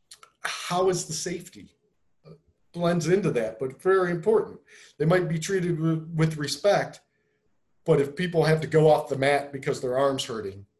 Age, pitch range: 40-59, 130-170 Hz